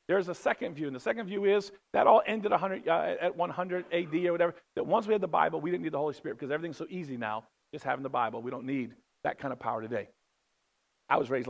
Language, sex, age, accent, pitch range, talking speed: English, male, 50-69, American, 140-215 Hz, 260 wpm